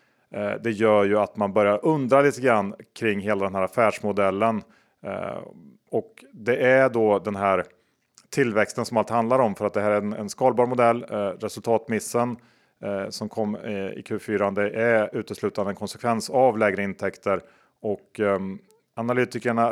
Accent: Norwegian